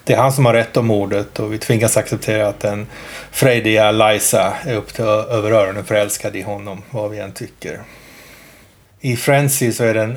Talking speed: 185 wpm